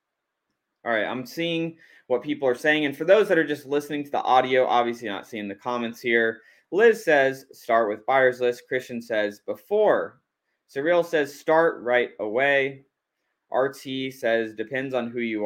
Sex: male